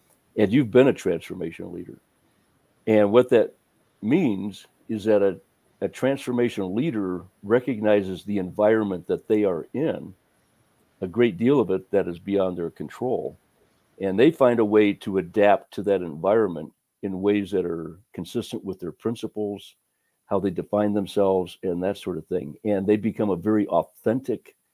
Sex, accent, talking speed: male, American, 160 wpm